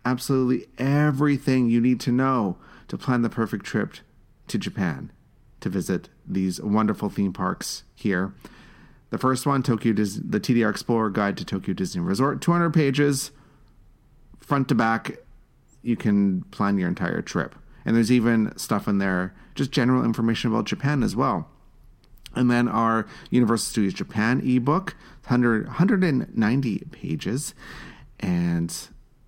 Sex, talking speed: male, 140 wpm